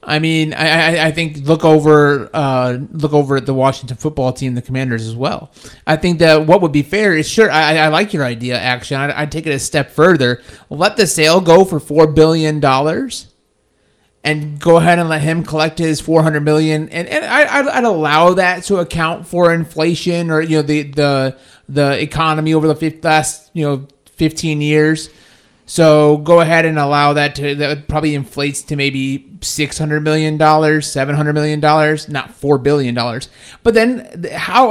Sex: male